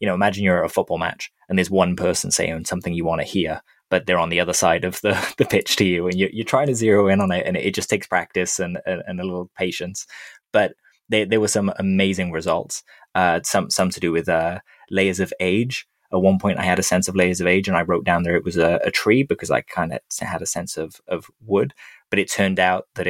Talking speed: 260 wpm